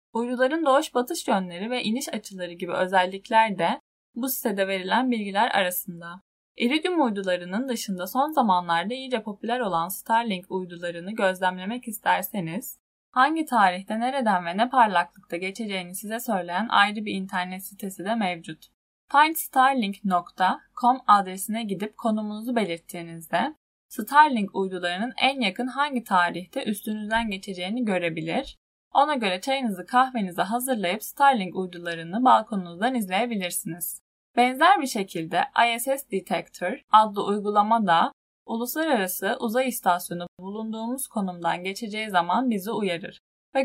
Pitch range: 185-245 Hz